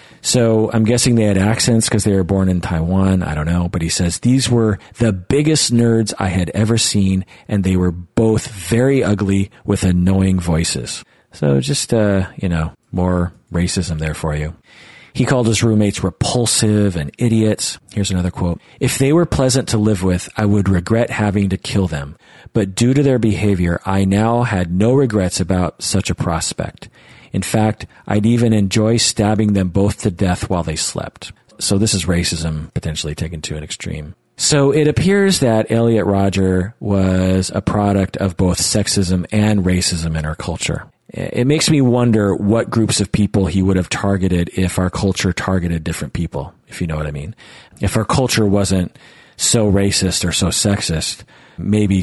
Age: 40-59